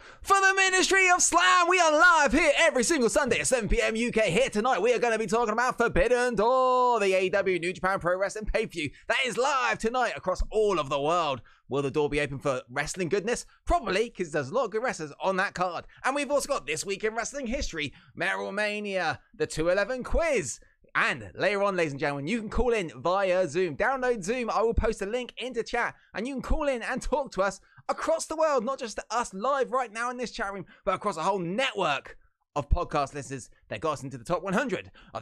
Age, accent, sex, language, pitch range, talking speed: 20-39, British, male, English, 150-245 Hz, 230 wpm